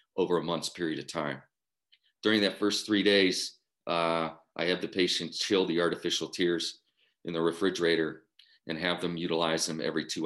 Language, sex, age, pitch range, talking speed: English, male, 40-59, 80-90 Hz, 175 wpm